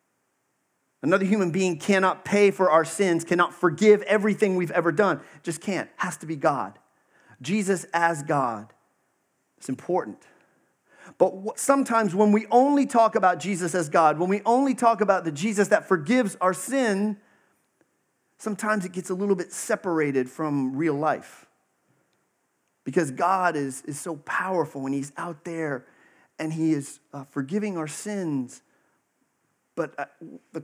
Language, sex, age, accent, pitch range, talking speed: English, male, 40-59, American, 150-200 Hz, 145 wpm